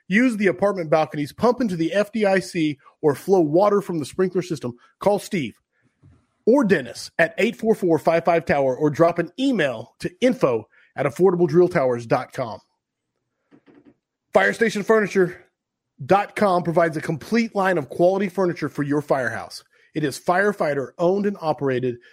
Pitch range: 150-205 Hz